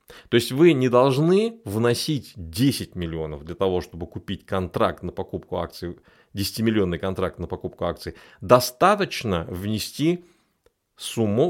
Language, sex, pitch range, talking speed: Russian, male, 90-125 Hz, 130 wpm